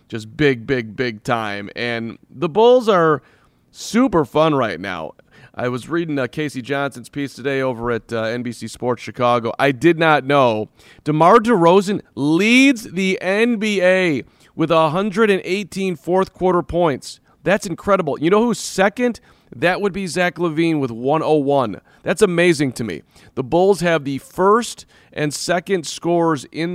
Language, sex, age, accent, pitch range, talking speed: English, male, 40-59, American, 120-170 Hz, 150 wpm